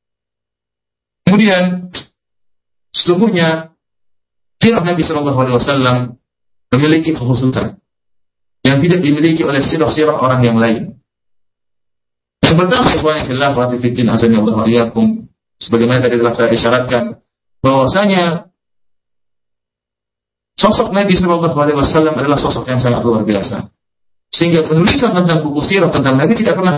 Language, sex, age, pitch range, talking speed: Malay, male, 50-69, 120-180 Hz, 100 wpm